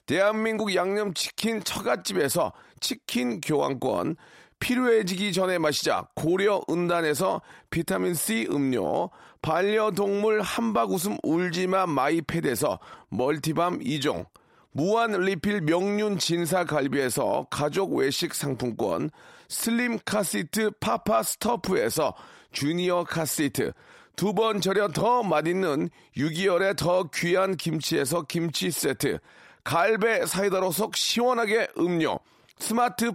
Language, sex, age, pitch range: Korean, male, 40-59, 165-210 Hz